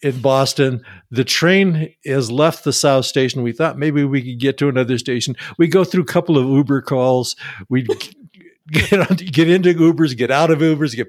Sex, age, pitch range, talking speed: male, 60-79, 125-165 Hz, 190 wpm